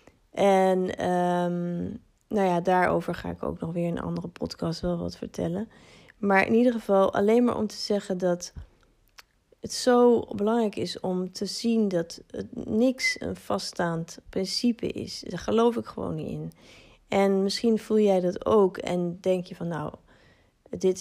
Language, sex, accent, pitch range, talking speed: Dutch, female, Dutch, 175-220 Hz, 170 wpm